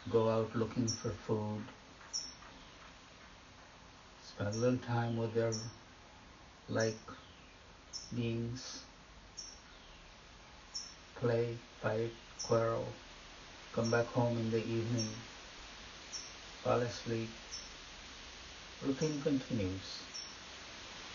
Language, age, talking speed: English, 60-79, 75 wpm